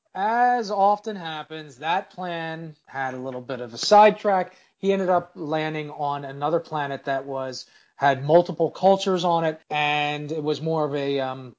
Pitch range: 145-180 Hz